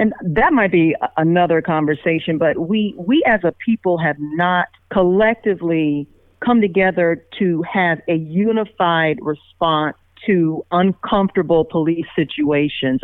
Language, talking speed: English, 120 wpm